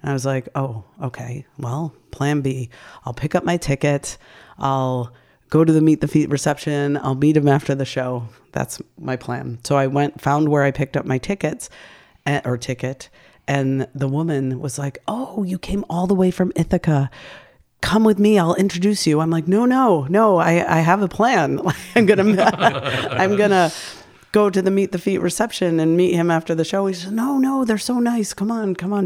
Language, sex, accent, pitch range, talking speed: English, female, American, 140-185 Hz, 200 wpm